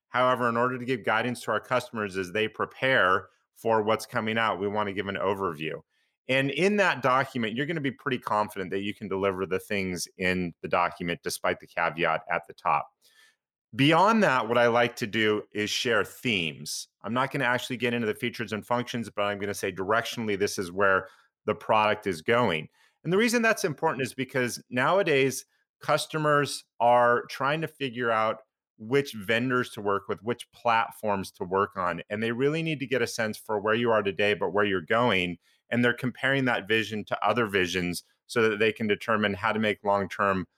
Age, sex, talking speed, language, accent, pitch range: 30-49, male, 205 wpm, English, American, 105-130 Hz